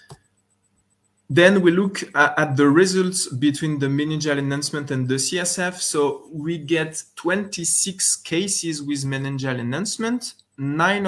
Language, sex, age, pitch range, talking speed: English, male, 20-39, 130-165 Hz, 120 wpm